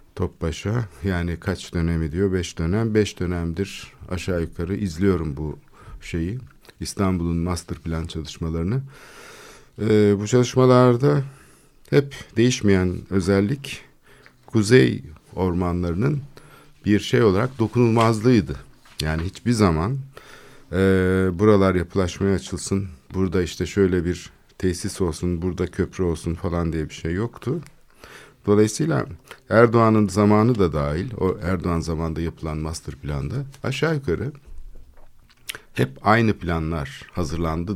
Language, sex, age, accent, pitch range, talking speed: Turkish, male, 50-69, native, 80-105 Hz, 110 wpm